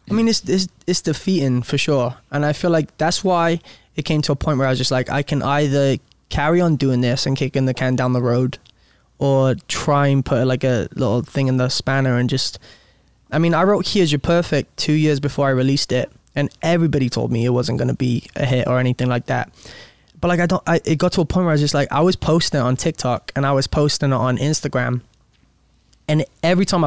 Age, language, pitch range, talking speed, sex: 20-39, English, 130-160 Hz, 250 wpm, male